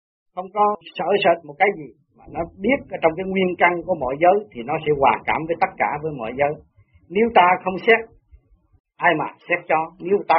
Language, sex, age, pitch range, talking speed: Vietnamese, male, 40-59, 160-210 Hz, 230 wpm